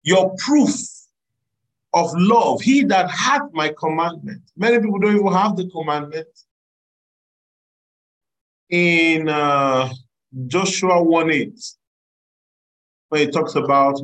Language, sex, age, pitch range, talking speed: English, male, 40-59, 140-185 Hz, 105 wpm